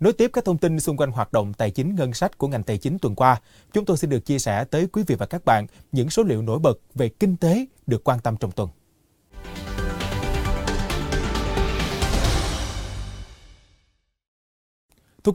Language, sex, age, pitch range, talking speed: Vietnamese, male, 20-39, 110-180 Hz, 175 wpm